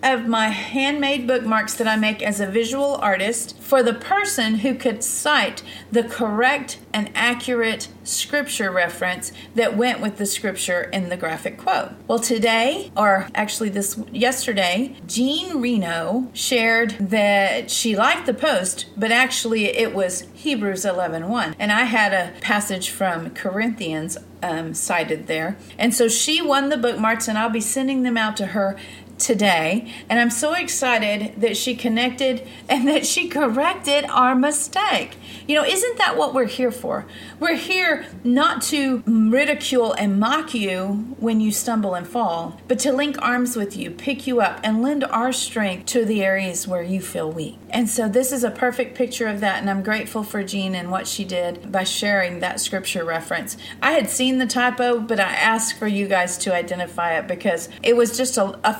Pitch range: 200-255 Hz